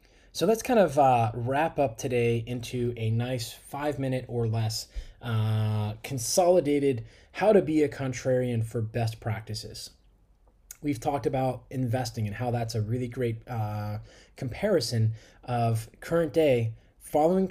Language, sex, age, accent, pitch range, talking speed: English, male, 20-39, American, 115-165 Hz, 140 wpm